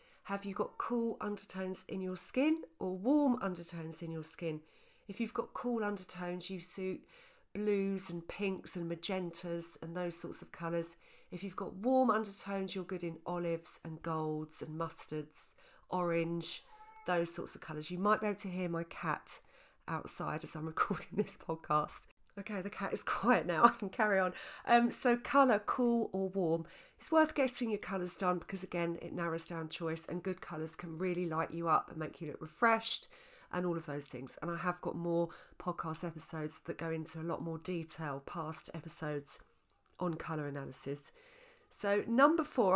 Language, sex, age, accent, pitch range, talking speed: English, female, 40-59, British, 165-215 Hz, 185 wpm